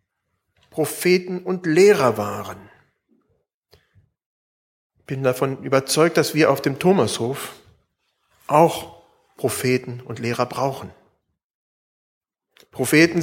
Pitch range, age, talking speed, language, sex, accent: 120-180 Hz, 40-59, 85 wpm, German, male, German